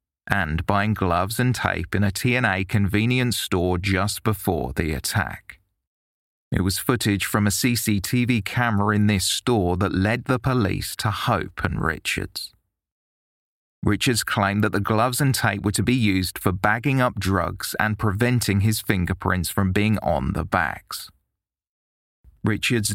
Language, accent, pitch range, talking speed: English, British, 95-115 Hz, 150 wpm